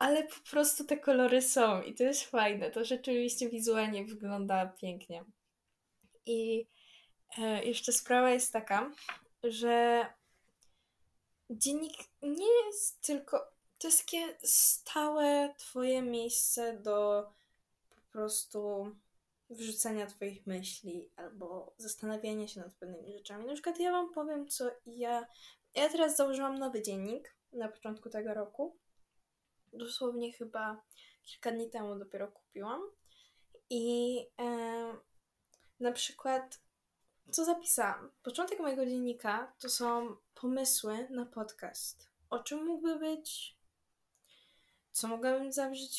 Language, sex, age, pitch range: Polish, female, 10-29, 220-285 Hz